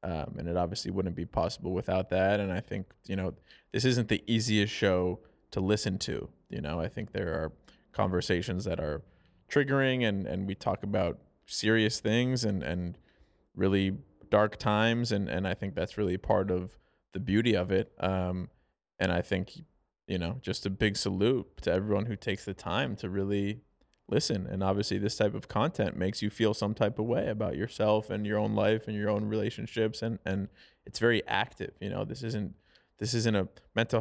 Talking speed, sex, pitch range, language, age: 195 wpm, male, 95-110 Hz, English, 20-39